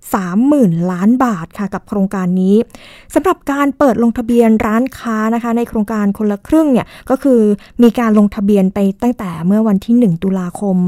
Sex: female